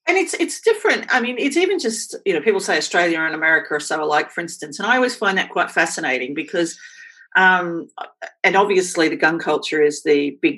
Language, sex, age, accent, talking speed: English, female, 40-59, Australian, 215 wpm